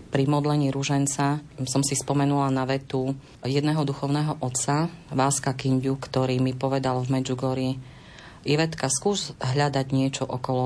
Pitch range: 130-145 Hz